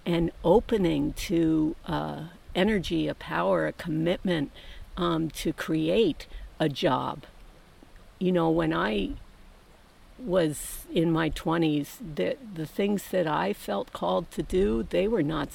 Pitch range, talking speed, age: 155-190 Hz, 130 wpm, 50-69